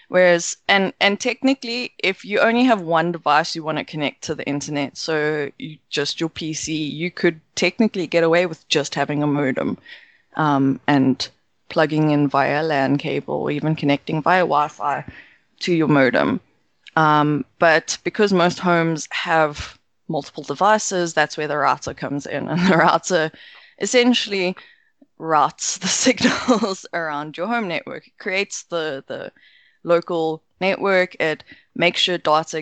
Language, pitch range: English, 150-180 Hz